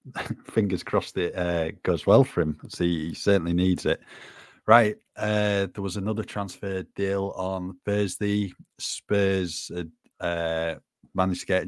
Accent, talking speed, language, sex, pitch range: British, 145 wpm, English, male, 85-100 Hz